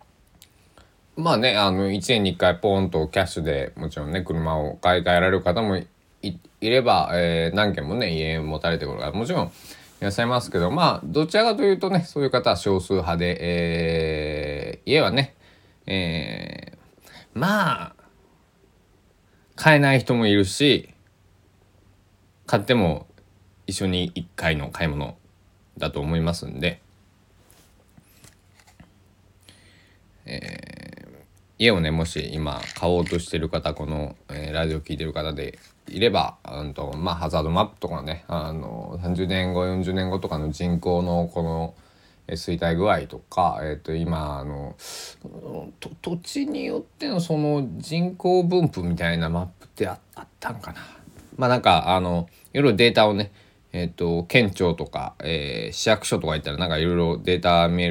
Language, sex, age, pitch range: Japanese, male, 20-39, 80-100 Hz